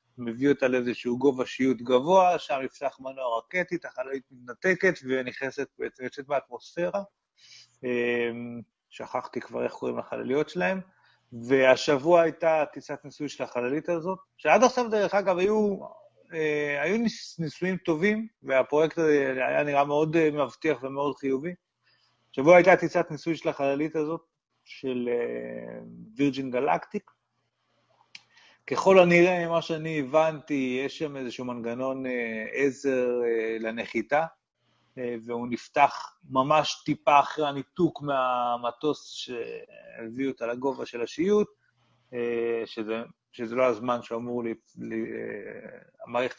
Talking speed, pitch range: 110 wpm, 120-165 Hz